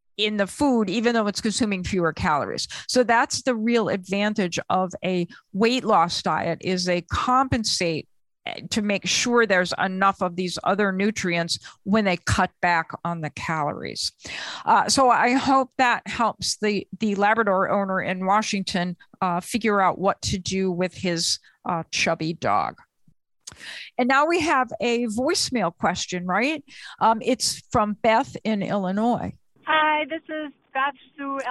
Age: 50-69